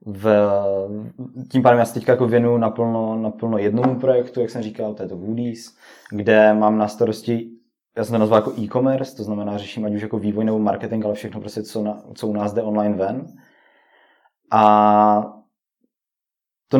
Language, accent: Czech, native